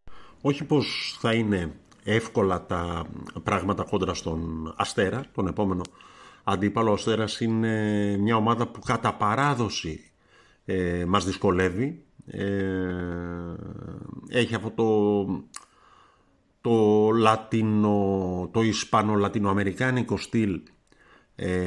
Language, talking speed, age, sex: Greek, 95 wpm, 50-69, male